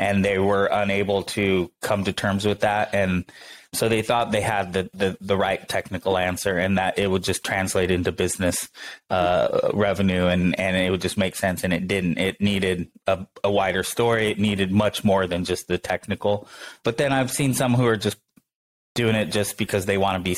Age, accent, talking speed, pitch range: 20-39, American, 210 wpm, 95-110 Hz